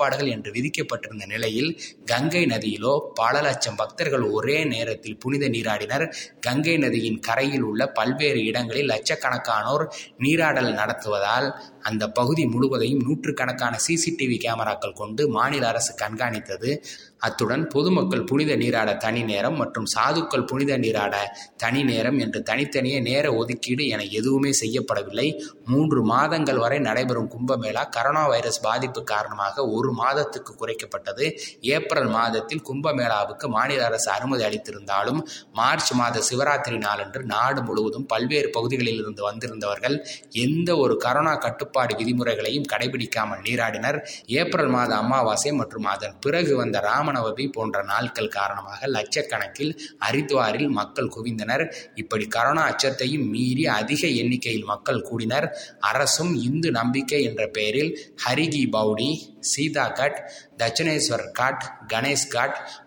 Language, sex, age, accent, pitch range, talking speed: Tamil, male, 20-39, native, 110-135 Hz, 110 wpm